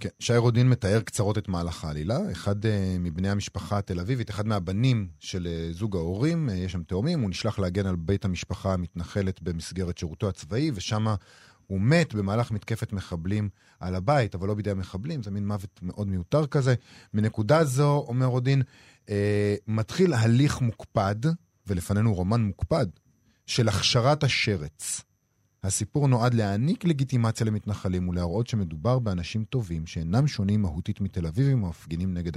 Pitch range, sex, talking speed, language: 95-125 Hz, male, 150 wpm, Hebrew